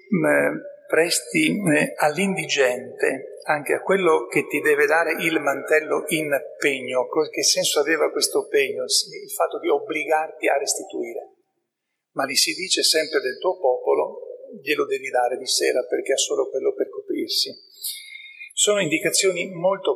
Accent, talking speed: native, 140 wpm